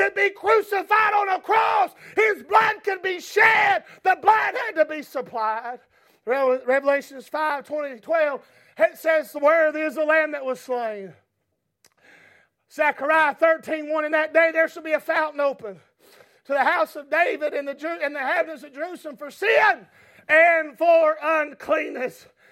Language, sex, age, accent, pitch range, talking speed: English, male, 40-59, American, 315-395 Hz, 155 wpm